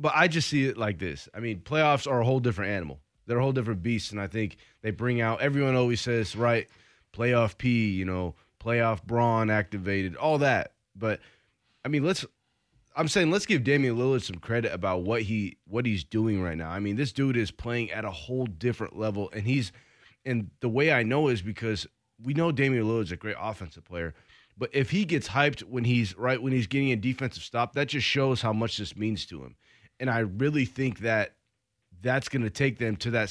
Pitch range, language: 110-135 Hz, English